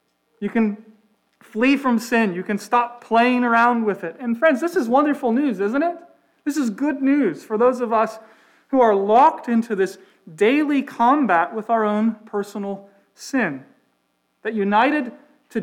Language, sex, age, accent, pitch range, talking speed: English, male, 40-59, American, 200-255 Hz, 165 wpm